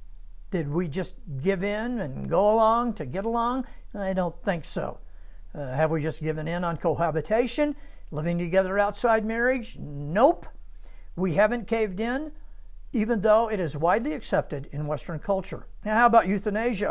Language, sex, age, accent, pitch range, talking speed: English, male, 60-79, American, 125-210 Hz, 160 wpm